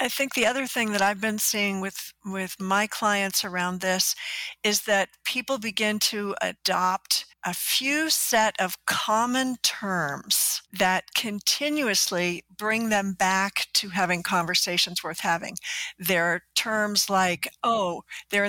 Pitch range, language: 195-245 Hz, English